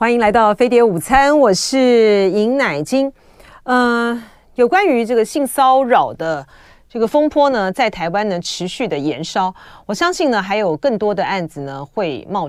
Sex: female